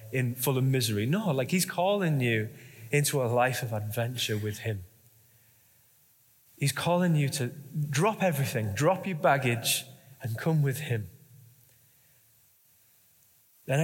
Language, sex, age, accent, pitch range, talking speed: English, male, 20-39, British, 115-140 Hz, 130 wpm